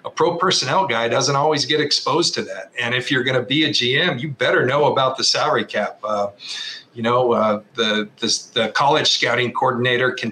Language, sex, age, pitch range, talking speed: English, male, 40-59, 115-135 Hz, 210 wpm